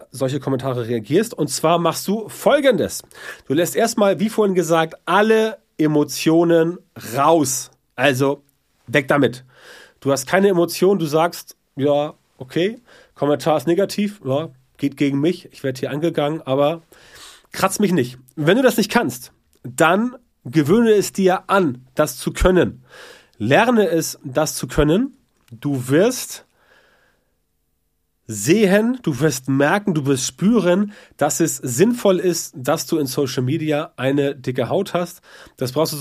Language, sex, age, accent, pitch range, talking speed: German, male, 30-49, German, 130-175 Hz, 145 wpm